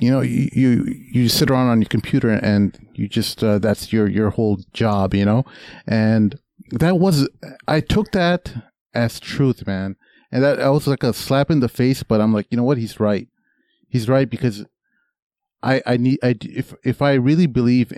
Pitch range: 105-125 Hz